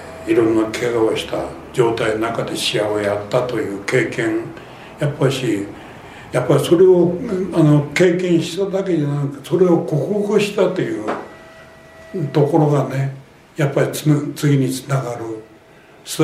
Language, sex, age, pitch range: Japanese, male, 60-79, 125-165 Hz